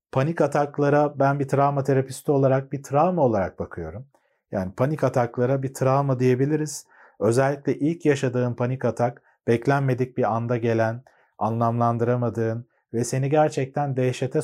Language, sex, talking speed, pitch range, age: Turkish, male, 130 wpm, 125-150 Hz, 40-59